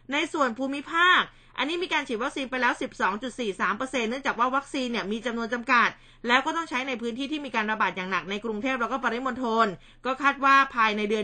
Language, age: Thai, 20-39